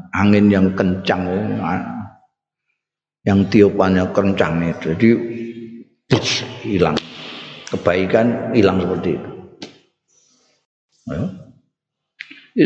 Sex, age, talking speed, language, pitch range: male, 50-69, 70 wpm, Indonesian, 100-125 Hz